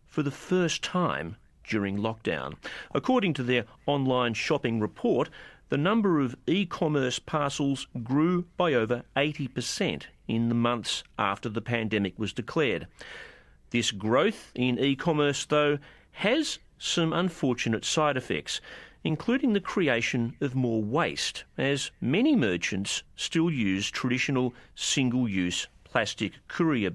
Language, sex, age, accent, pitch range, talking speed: English, male, 40-59, Australian, 110-165 Hz, 120 wpm